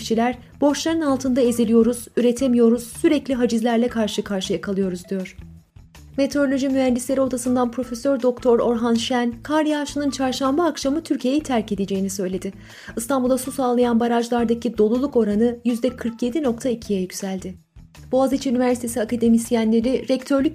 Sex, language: female, Turkish